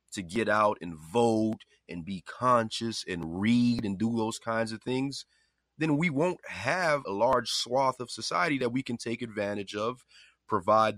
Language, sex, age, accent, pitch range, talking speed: English, male, 30-49, American, 95-125 Hz, 175 wpm